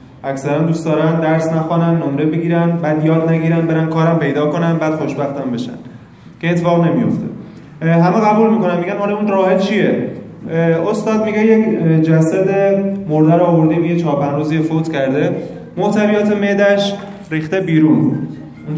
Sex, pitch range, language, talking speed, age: male, 155-195 Hz, Persian, 145 wpm, 20-39